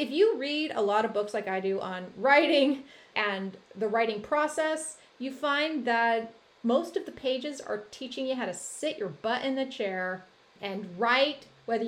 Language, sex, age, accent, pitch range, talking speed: English, female, 30-49, American, 210-280 Hz, 185 wpm